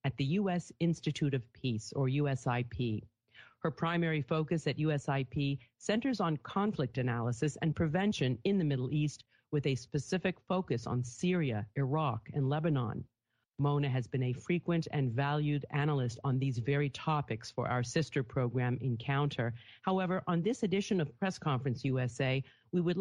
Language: English